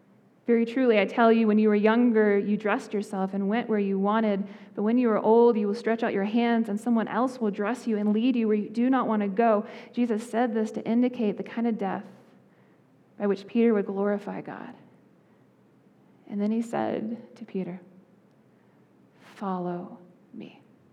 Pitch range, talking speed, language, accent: 205-240 Hz, 190 wpm, English, American